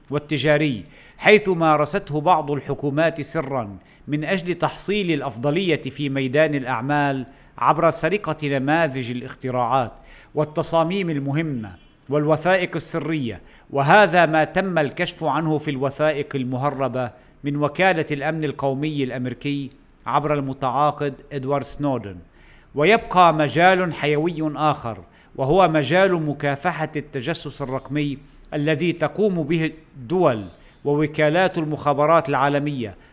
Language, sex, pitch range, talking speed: Arabic, male, 135-155 Hz, 100 wpm